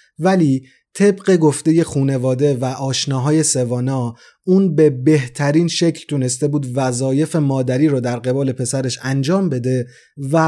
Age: 30-49